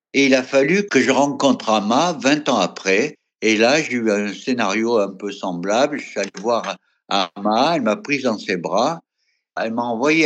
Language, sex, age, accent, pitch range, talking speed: French, male, 60-79, French, 120-165 Hz, 200 wpm